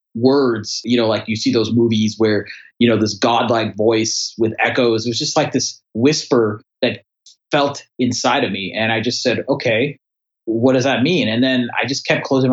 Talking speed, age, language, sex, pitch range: 200 wpm, 30-49, English, male, 110-125 Hz